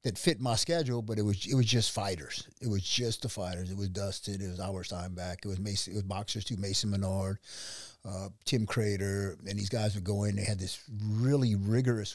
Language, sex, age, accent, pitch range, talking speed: English, male, 50-69, American, 100-115 Hz, 225 wpm